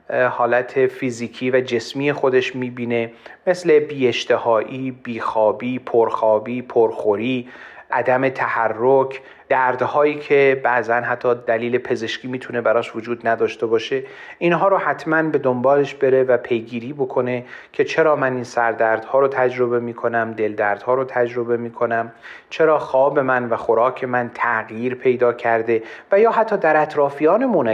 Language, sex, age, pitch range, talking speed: Persian, male, 30-49, 115-140 Hz, 130 wpm